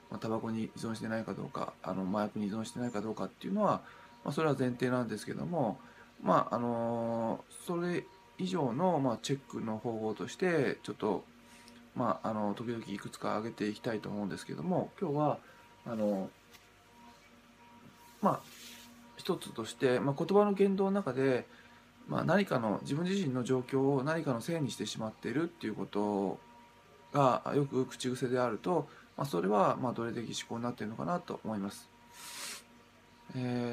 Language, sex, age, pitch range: Japanese, male, 20-39, 110-130 Hz